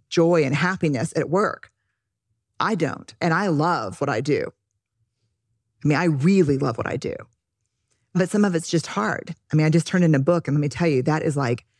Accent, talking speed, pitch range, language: American, 220 wpm, 145-180 Hz, English